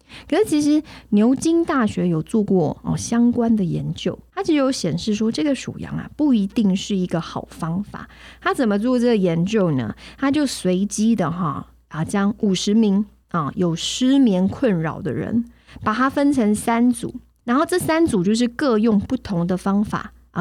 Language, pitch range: Chinese, 175-230 Hz